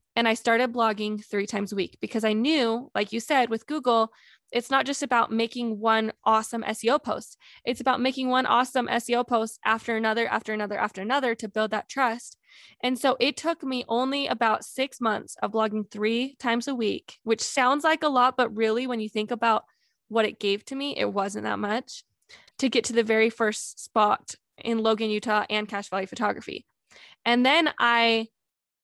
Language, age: English, 20-39